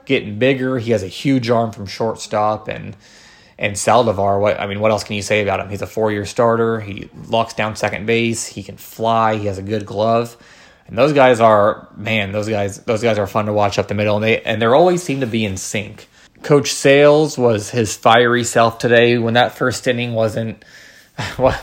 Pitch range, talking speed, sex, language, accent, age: 105-120 Hz, 220 wpm, male, English, American, 20-39